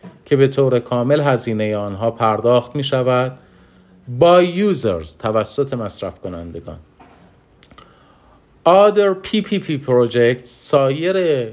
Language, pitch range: Persian, 100-140 Hz